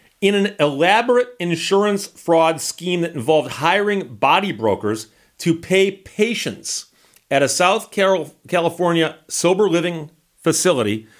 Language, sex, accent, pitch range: English, male, American, 150-190 Hz